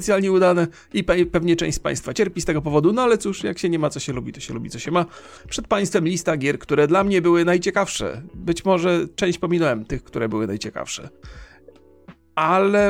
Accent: native